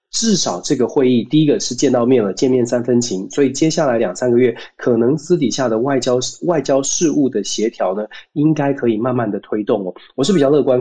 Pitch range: 120-150 Hz